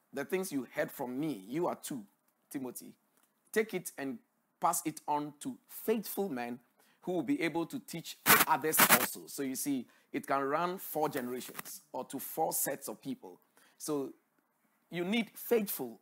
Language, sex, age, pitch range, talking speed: English, male, 50-69, 135-210 Hz, 170 wpm